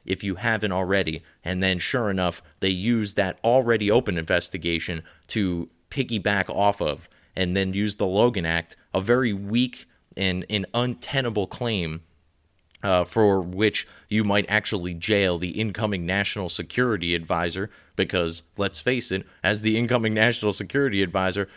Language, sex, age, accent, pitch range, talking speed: English, male, 30-49, American, 90-110 Hz, 145 wpm